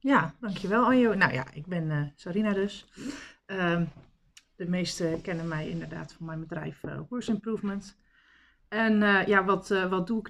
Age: 40-59